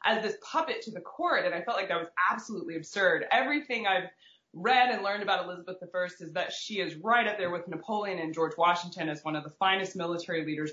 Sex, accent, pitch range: female, American, 170-230 Hz